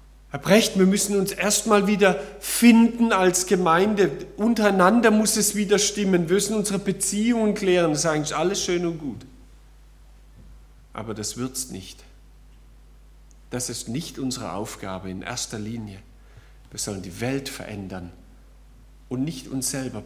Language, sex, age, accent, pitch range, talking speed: German, male, 40-59, German, 130-195 Hz, 145 wpm